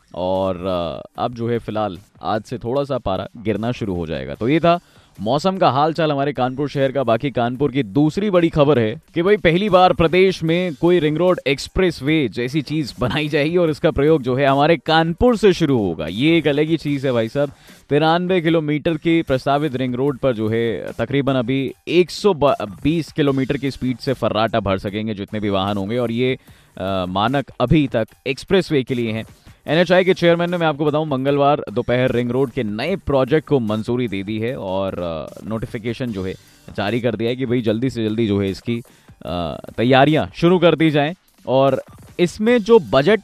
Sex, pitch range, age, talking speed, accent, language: male, 120-160 Hz, 20-39, 195 wpm, native, Hindi